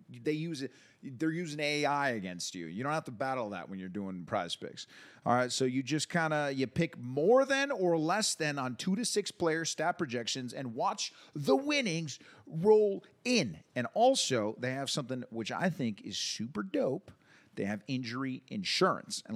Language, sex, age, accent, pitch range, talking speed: English, male, 40-59, American, 115-170 Hz, 190 wpm